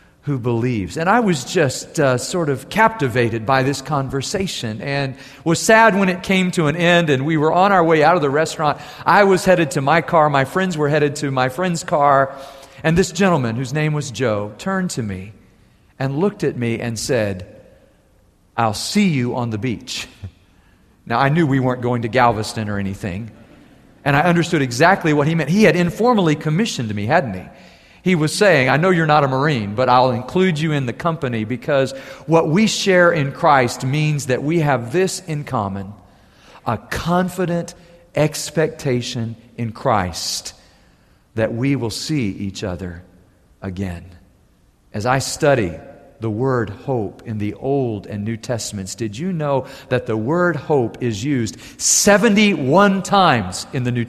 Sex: male